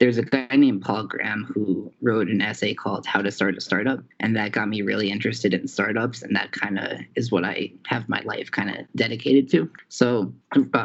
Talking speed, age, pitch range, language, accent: 220 wpm, 20-39, 100-120 Hz, English, American